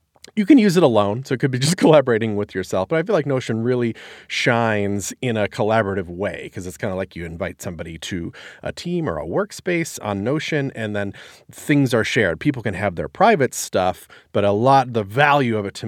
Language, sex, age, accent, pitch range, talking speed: English, male, 30-49, American, 100-140 Hz, 225 wpm